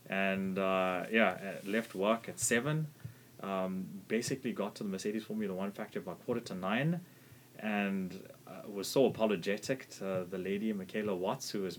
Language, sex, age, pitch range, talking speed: English, male, 20-39, 90-115 Hz, 170 wpm